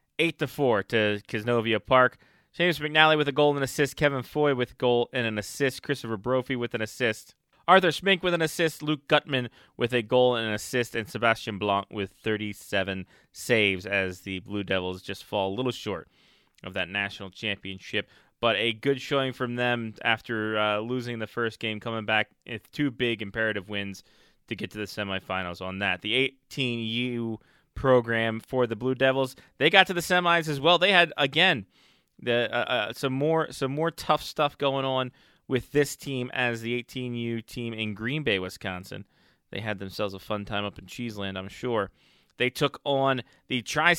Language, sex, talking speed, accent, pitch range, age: English, male, 190 wpm, American, 110-145 Hz, 20-39